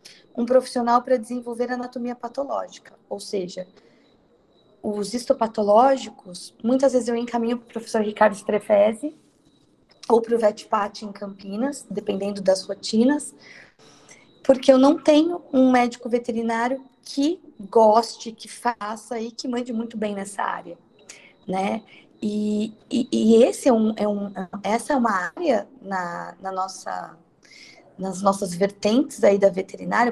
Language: Portuguese